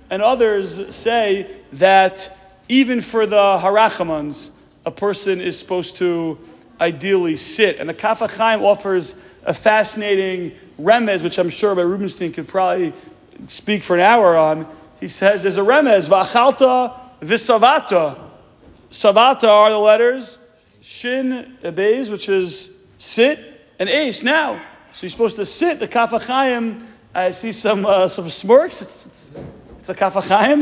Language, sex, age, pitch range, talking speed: English, male, 40-59, 180-230 Hz, 140 wpm